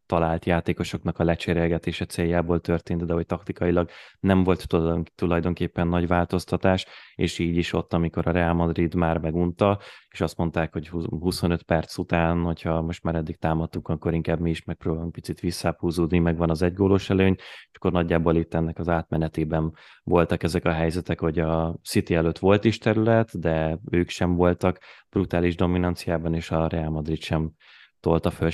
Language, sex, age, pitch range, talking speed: Hungarian, male, 20-39, 85-90 Hz, 165 wpm